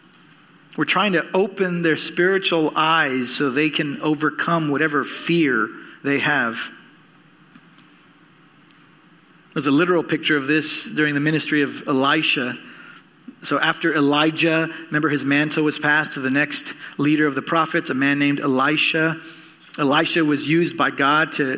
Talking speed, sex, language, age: 140 wpm, male, English, 40-59